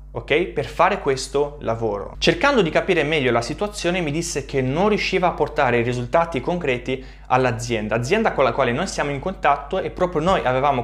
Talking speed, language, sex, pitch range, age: 185 wpm, Italian, male, 125-175 Hz, 20-39